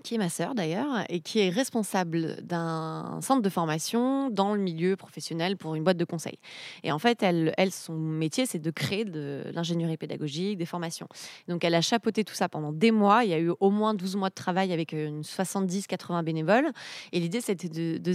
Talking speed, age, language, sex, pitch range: 210 wpm, 20-39, French, female, 165-215 Hz